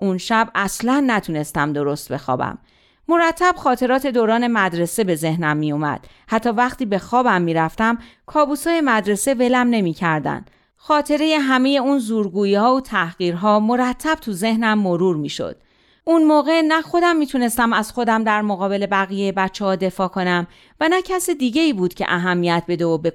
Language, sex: Persian, female